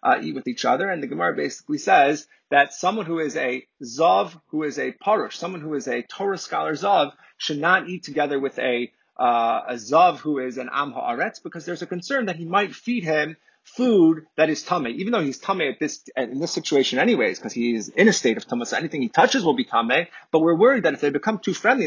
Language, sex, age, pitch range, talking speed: English, male, 30-49, 145-210 Hz, 240 wpm